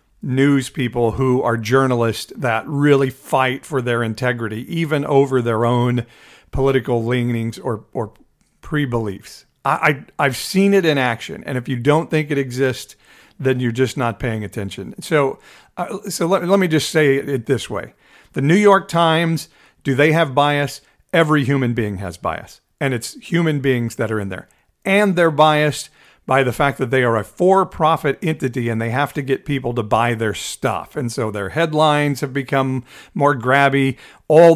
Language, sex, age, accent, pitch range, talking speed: English, male, 50-69, American, 125-155 Hz, 180 wpm